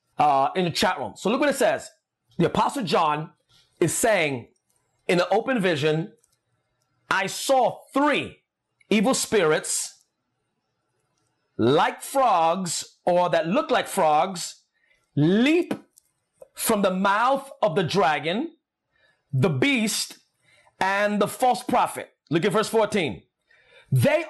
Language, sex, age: English, male, 30-49